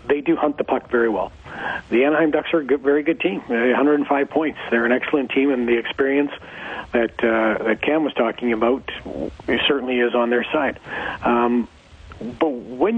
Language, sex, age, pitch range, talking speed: English, male, 40-59, 120-140 Hz, 180 wpm